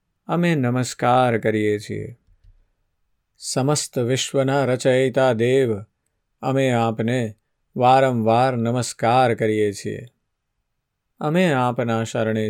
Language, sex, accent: Gujarati, male, native